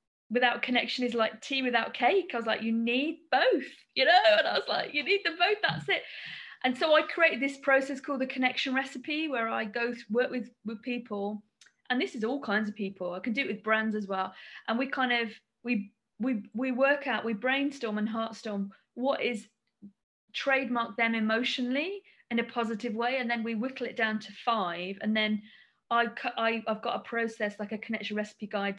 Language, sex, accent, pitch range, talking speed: English, female, British, 215-260 Hz, 210 wpm